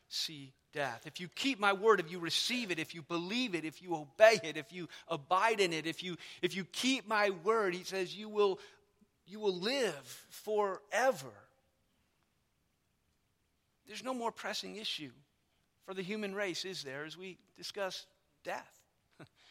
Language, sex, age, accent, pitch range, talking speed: English, male, 50-69, American, 165-205 Hz, 165 wpm